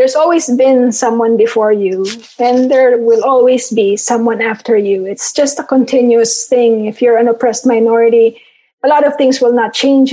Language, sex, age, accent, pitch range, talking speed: English, female, 20-39, Filipino, 225-260 Hz, 185 wpm